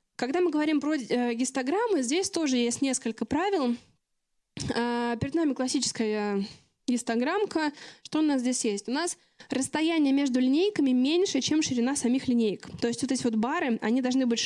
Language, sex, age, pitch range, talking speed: Russian, female, 20-39, 230-285 Hz, 160 wpm